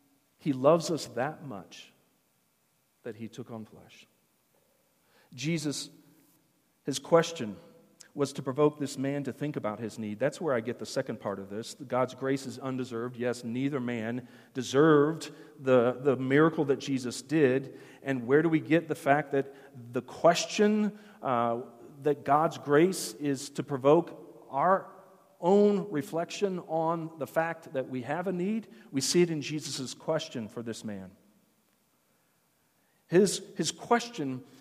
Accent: American